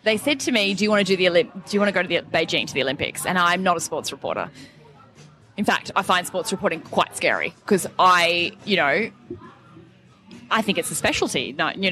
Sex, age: female, 20-39